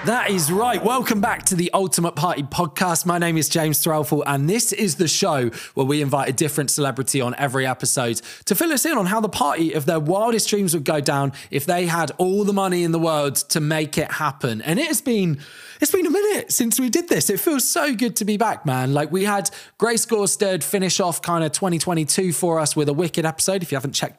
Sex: male